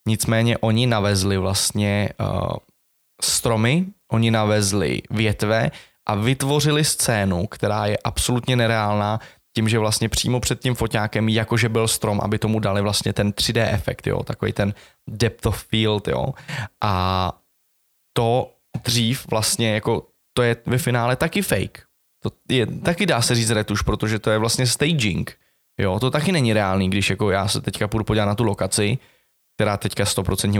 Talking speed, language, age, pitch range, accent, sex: 160 wpm, Czech, 20-39, 105-125 Hz, native, male